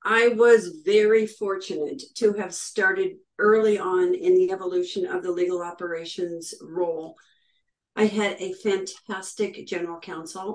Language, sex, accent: English, female, American